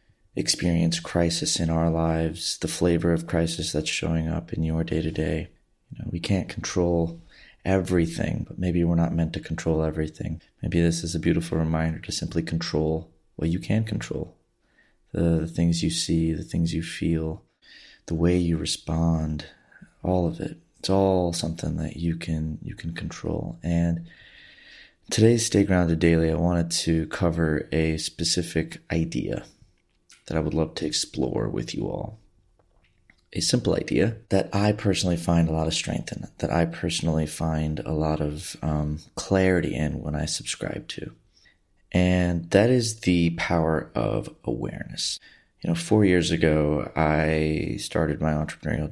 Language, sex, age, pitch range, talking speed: English, male, 30-49, 80-85 Hz, 160 wpm